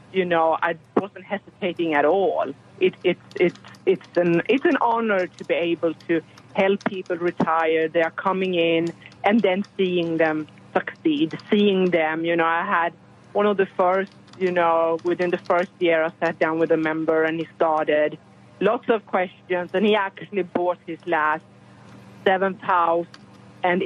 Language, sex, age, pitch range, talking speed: English, female, 30-49, 160-195 Hz, 170 wpm